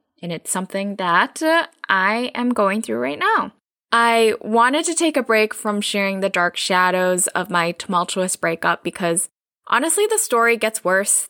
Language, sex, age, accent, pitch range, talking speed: English, female, 10-29, American, 180-230 Hz, 165 wpm